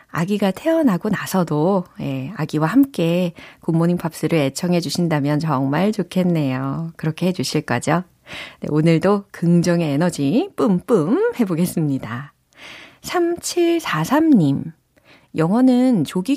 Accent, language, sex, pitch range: native, Korean, female, 155-220 Hz